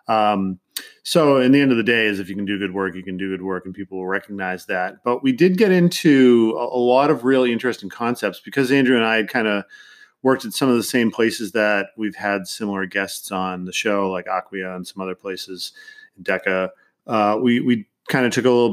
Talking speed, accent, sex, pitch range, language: 235 wpm, American, male, 95-120 Hz, English